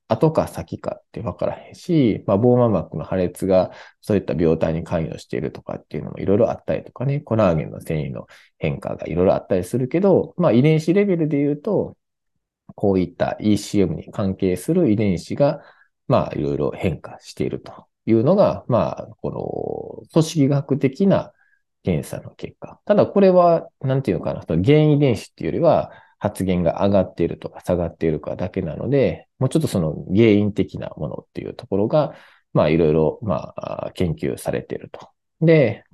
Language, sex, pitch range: Japanese, male, 100-160 Hz